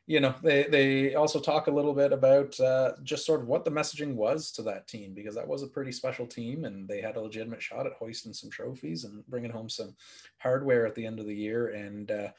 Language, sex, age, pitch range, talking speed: English, male, 30-49, 105-135 Hz, 240 wpm